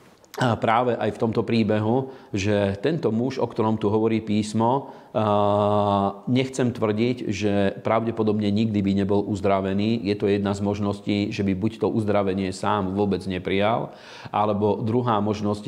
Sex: male